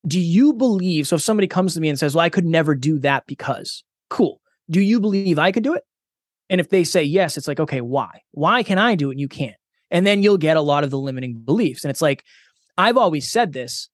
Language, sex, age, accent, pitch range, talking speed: English, male, 20-39, American, 140-185 Hz, 260 wpm